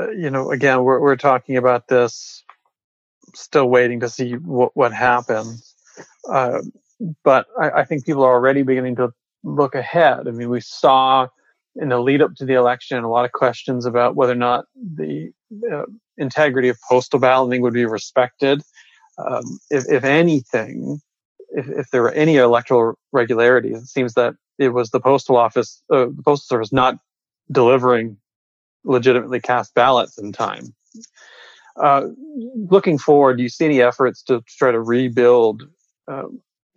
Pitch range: 120-150 Hz